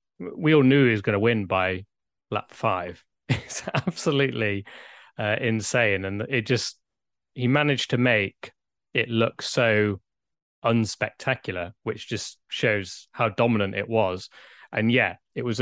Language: English